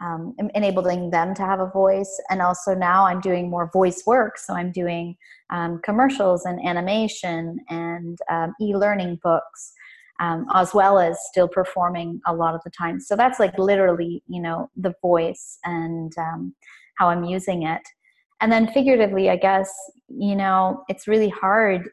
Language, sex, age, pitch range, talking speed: English, female, 30-49, 175-200 Hz, 165 wpm